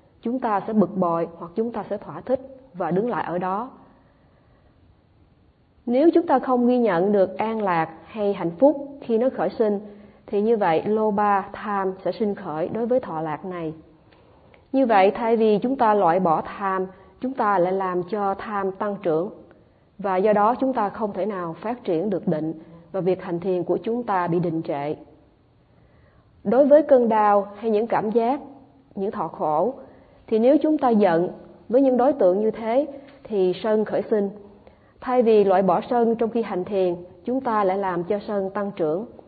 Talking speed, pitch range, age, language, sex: 195 wpm, 175-230 Hz, 20-39, Vietnamese, female